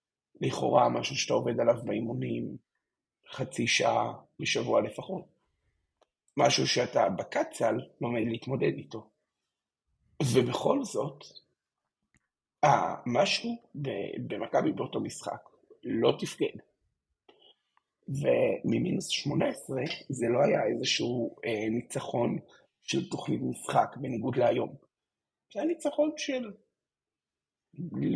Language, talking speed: Hebrew, 80 wpm